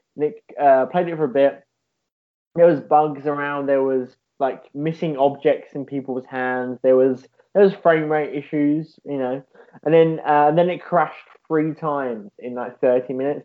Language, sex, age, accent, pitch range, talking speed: English, male, 10-29, British, 135-175 Hz, 185 wpm